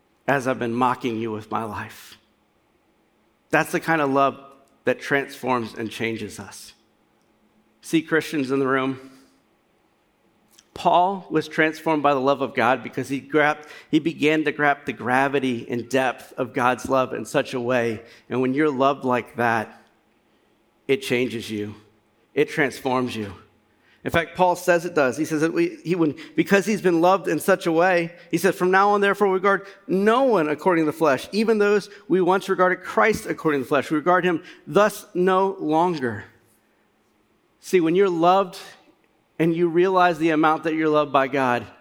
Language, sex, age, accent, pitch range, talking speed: English, male, 40-59, American, 125-170 Hz, 175 wpm